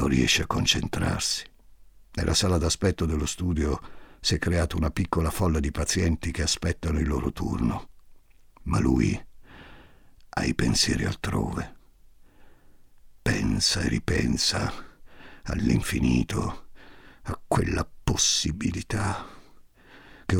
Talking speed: 105 wpm